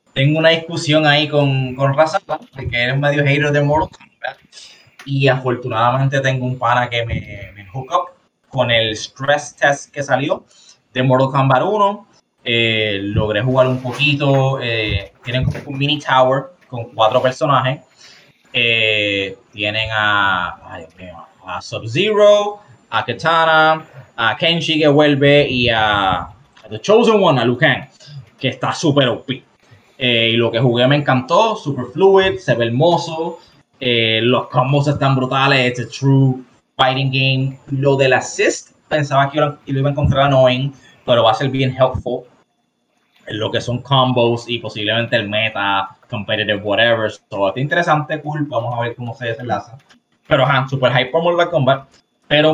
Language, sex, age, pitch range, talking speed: Spanish, male, 20-39, 120-145 Hz, 160 wpm